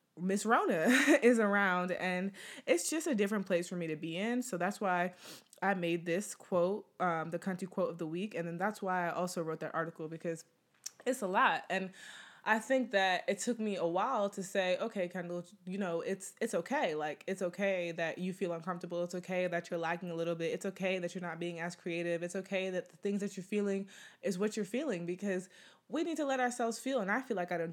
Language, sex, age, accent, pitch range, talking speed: English, female, 20-39, American, 175-205 Hz, 235 wpm